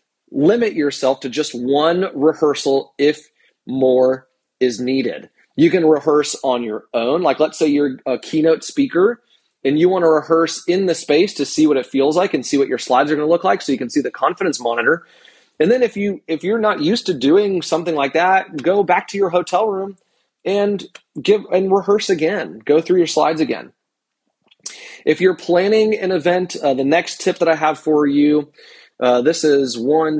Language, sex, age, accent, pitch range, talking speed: English, male, 30-49, American, 135-180 Hz, 200 wpm